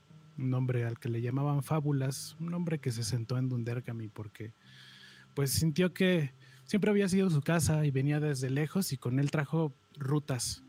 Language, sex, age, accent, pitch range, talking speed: Spanish, male, 30-49, Mexican, 115-140 Hz, 180 wpm